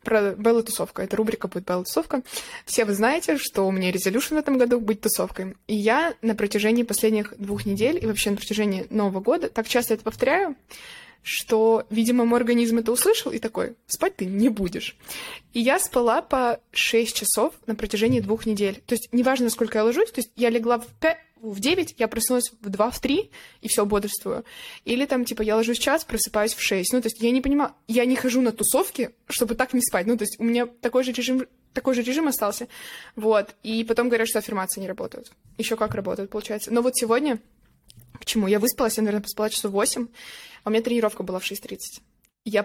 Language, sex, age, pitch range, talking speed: Russian, female, 20-39, 210-245 Hz, 215 wpm